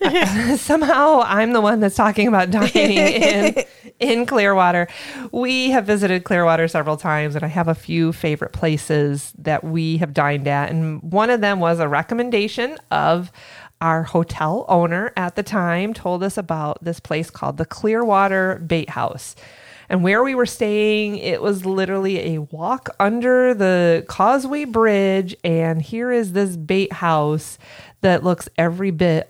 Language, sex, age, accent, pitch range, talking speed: English, female, 30-49, American, 160-210 Hz, 160 wpm